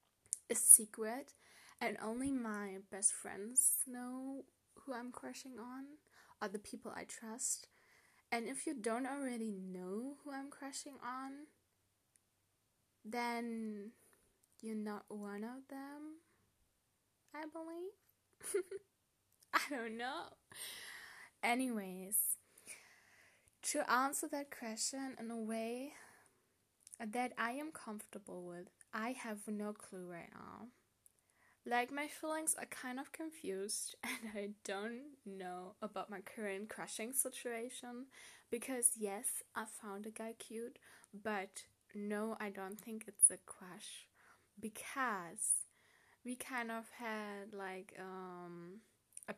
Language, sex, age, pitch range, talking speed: English, female, 10-29, 205-255 Hz, 115 wpm